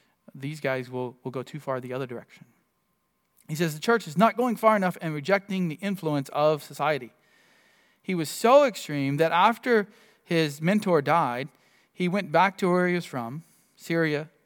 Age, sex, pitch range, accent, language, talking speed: 40-59, male, 135-175 Hz, American, English, 180 wpm